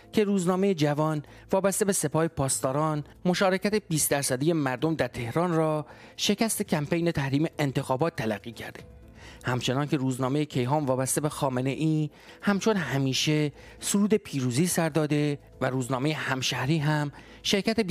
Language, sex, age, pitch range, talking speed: English, male, 30-49, 130-160 Hz, 125 wpm